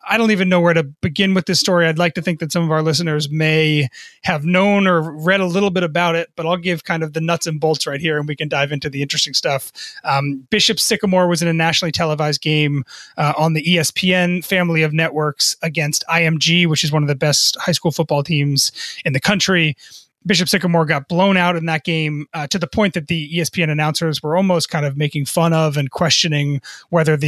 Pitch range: 160-185 Hz